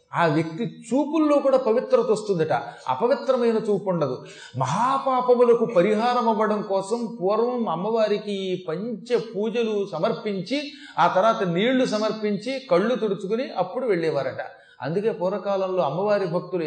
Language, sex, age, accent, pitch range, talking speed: Telugu, male, 30-49, native, 175-235 Hz, 110 wpm